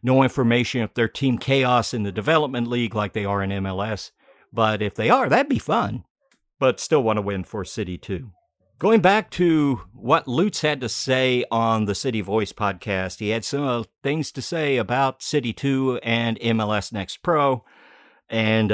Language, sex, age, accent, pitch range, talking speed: English, male, 50-69, American, 105-130 Hz, 190 wpm